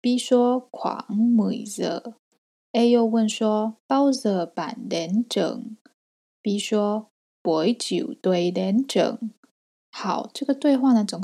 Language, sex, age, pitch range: Chinese, female, 20-39, 190-235 Hz